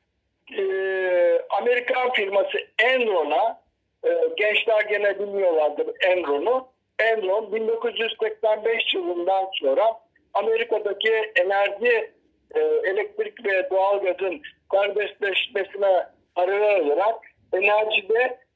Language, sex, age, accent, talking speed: Turkish, male, 60-79, native, 80 wpm